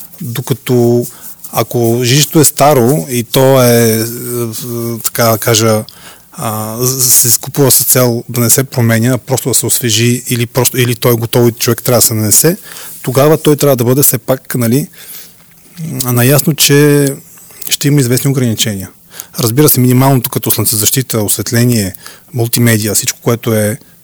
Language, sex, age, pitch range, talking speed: Bulgarian, male, 30-49, 115-140 Hz, 150 wpm